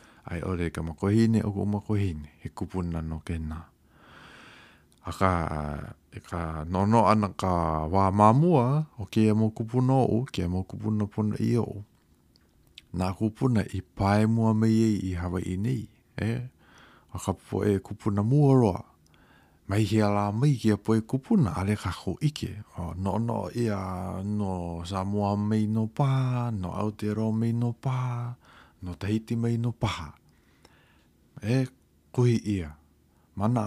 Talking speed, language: 140 wpm, English